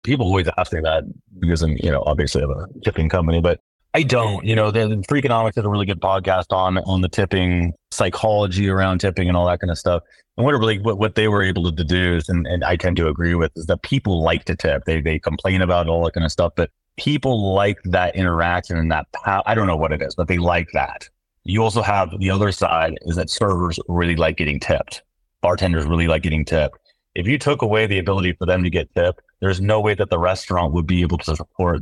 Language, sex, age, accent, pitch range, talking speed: English, male, 30-49, American, 80-100 Hz, 250 wpm